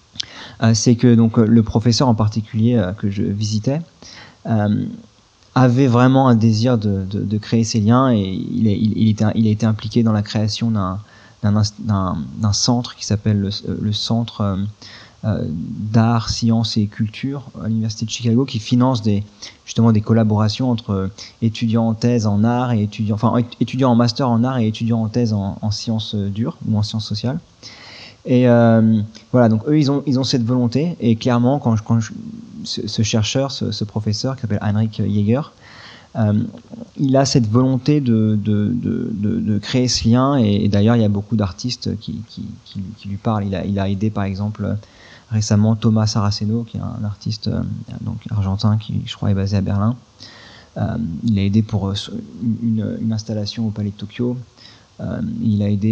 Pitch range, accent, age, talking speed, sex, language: 105-120 Hz, French, 30-49, 195 wpm, male, French